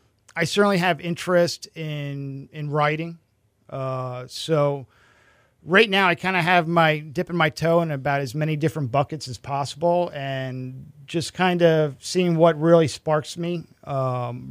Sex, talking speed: male, 155 wpm